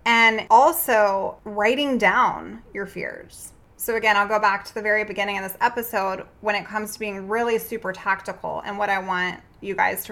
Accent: American